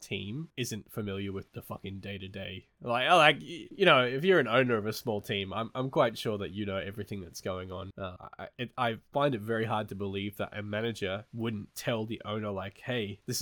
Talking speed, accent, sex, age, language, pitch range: 230 wpm, Australian, male, 20-39, English, 100-130 Hz